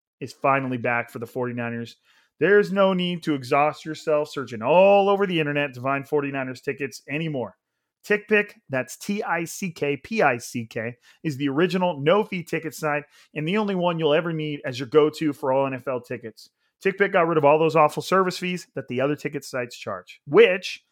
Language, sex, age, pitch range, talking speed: English, male, 30-49, 140-180 Hz, 175 wpm